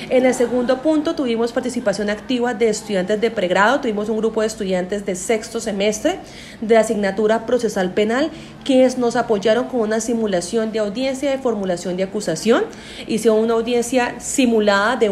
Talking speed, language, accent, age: 160 wpm, Spanish, Colombian, 30-49